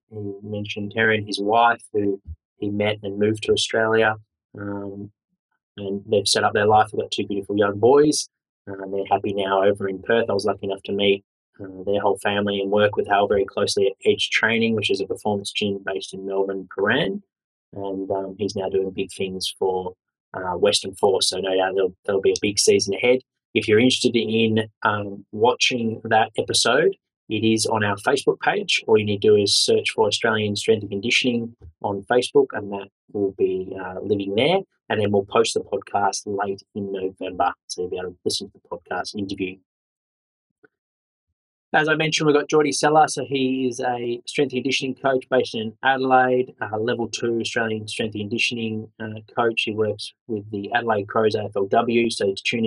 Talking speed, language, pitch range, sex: 195 wpm, English, 100-125 Hz, male